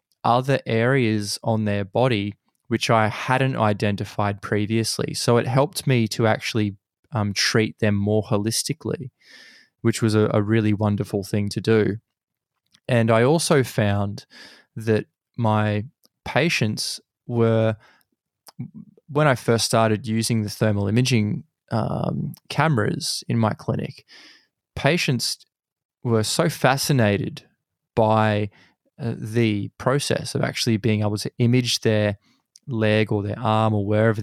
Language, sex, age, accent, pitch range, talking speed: English, male, 20-39, Australian, 105-120 Hz, 125 wpm